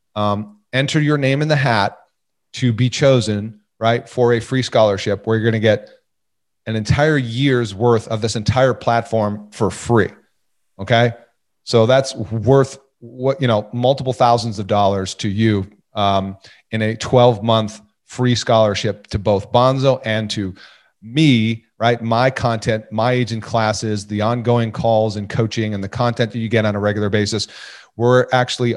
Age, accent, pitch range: 40-59, American, 105-125 Hz